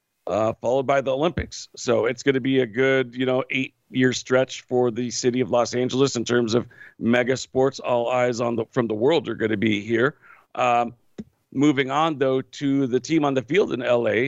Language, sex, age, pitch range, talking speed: English, male, 40-59, 120-135 Hz, 220 wpm